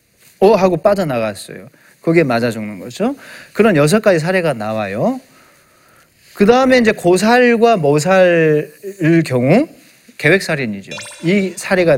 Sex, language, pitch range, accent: male, Korean, 135-215 Hz, native